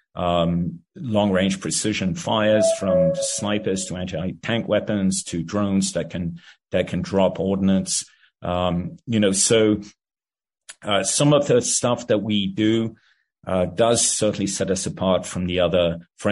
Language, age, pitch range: English, 30-49, 90-110 Hz